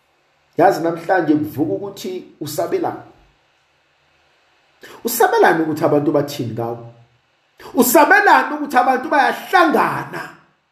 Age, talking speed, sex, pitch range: 50-69, 95 wpm, male, 220-365 Hz